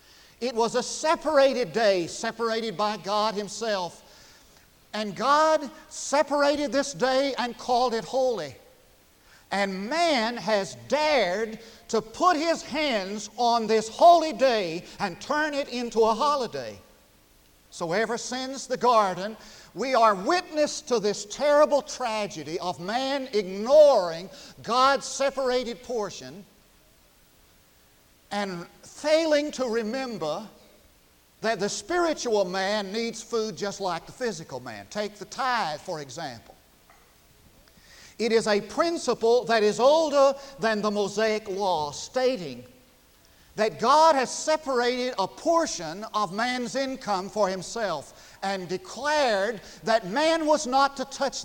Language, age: English, 50-69